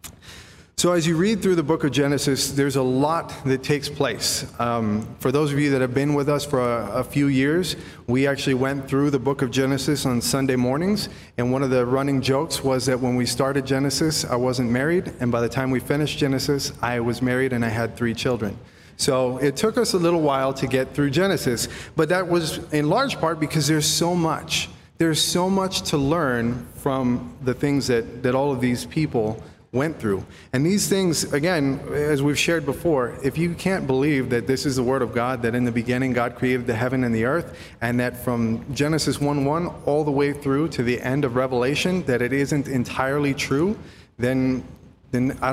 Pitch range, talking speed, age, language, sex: 125-150 Hz, 210 wpm, 30-49, English, male